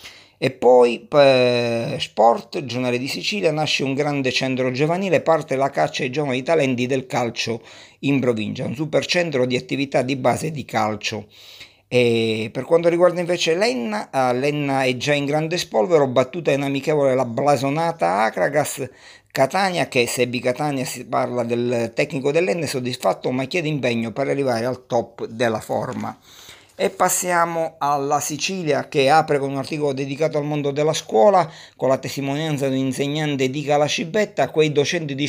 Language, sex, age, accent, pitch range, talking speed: Italian, male, 50-69, native, 125-150 Hz, 160 wpm